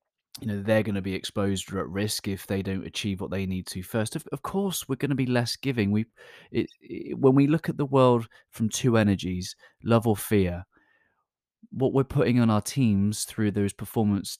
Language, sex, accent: English, male, British